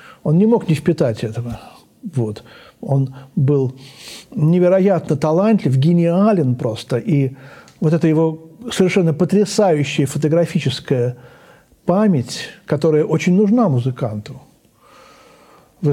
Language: Russian